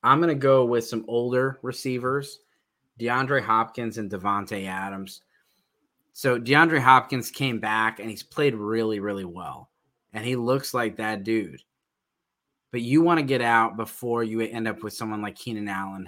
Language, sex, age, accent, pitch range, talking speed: English, male, 20-39, American, 110-125 Hz, 165 wpm